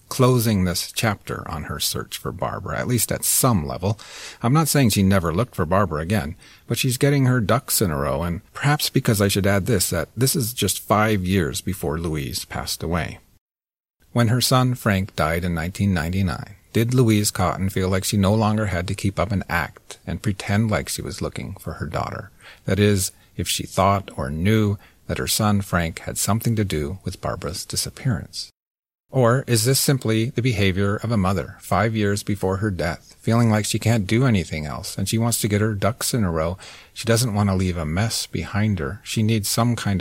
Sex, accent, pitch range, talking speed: male, American, 90-115 Hz, 210 wpm